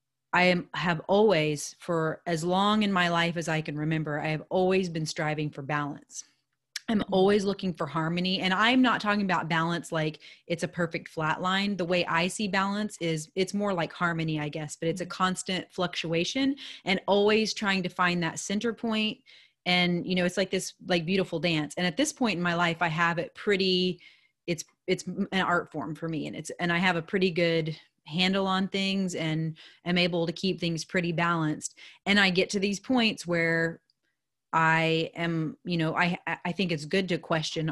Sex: female